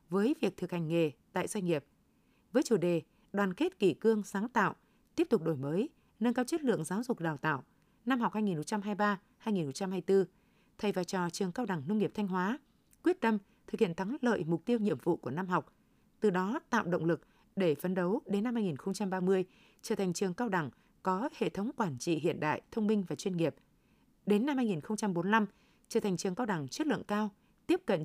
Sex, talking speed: female, 205 wpm